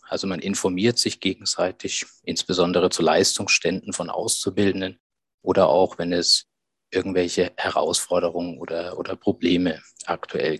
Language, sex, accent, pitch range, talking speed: German, male, German, 95-115 Hz, 115 wpm